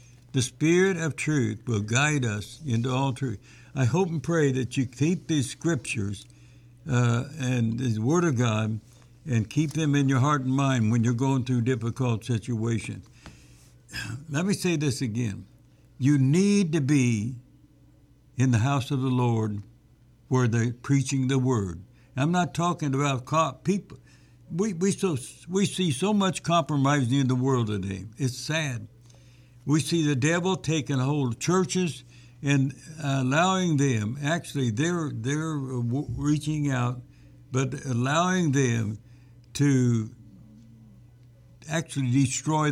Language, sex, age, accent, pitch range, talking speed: English, male, 60-79, American, 120-150 Hz, 140 wpm